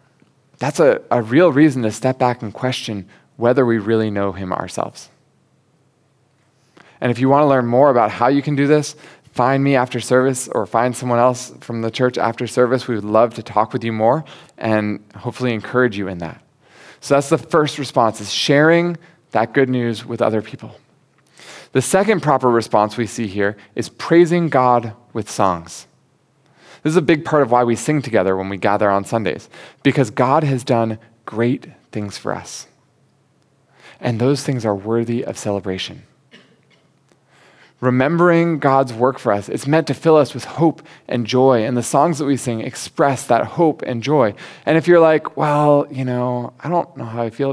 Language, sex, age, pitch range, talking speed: English, male, 20-39, 115-140 Hz, 190 wpm